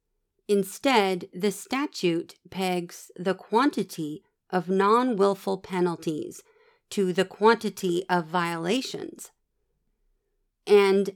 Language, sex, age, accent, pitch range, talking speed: English, female, 40-59, American, 175-225 Hz, 80 wpm